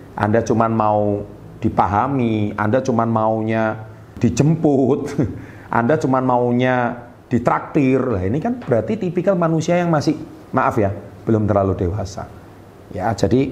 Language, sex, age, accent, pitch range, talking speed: Indonesian, male, 40-59, native, 100-130 Hz, 120 wpm